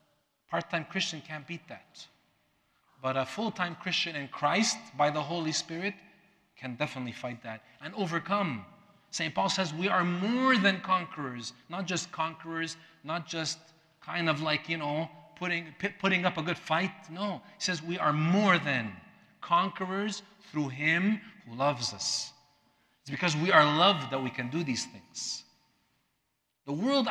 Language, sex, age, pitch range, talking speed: English, male, 40-59, 140-195 Hz, 160 wpm